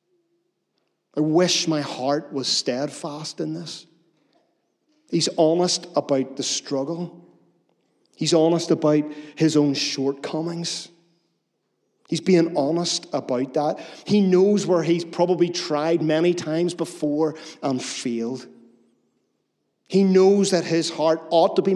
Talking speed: 120 wpm